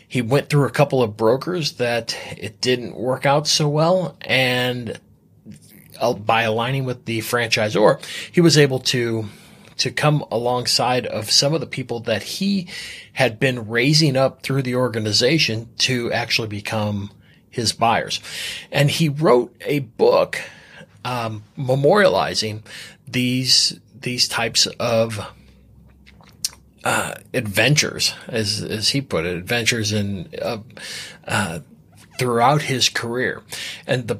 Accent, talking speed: American, 130 wpm